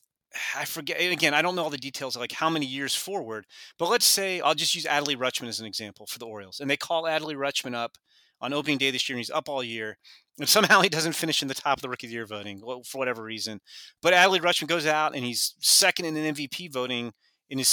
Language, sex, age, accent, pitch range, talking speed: English, male, 30-49, American, 125-170 Hz, 255 wpm